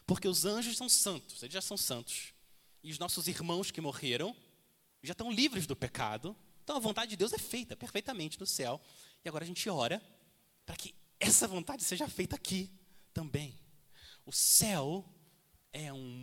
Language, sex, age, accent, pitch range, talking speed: Portuguese, male, 30-49, Brazilian, 125-185 Hz, 175 wpm